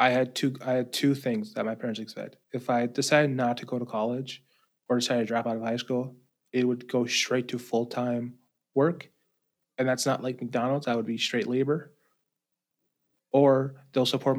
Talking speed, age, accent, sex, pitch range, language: 195 wpm, 20-39, American, male, 115-130 Hz, English